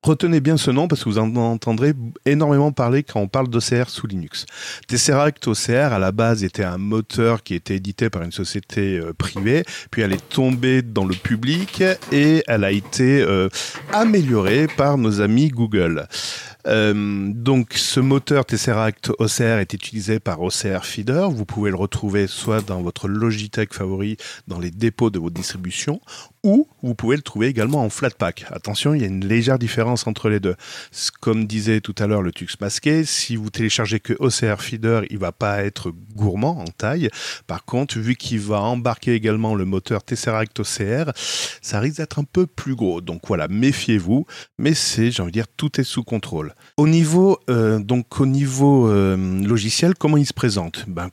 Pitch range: 100-135 Hz